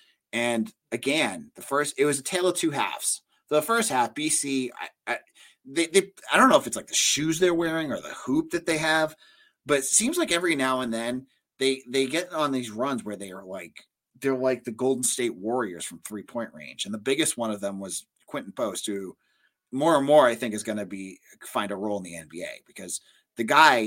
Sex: male